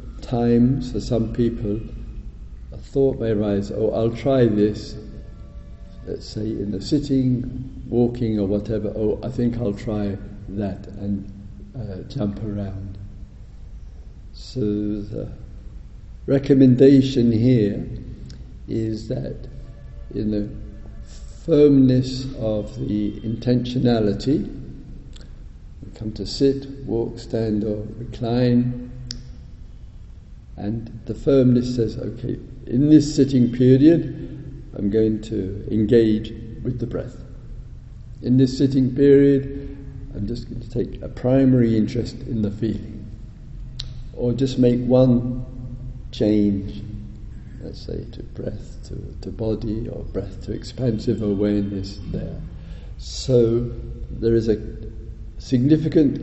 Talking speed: 110 wpm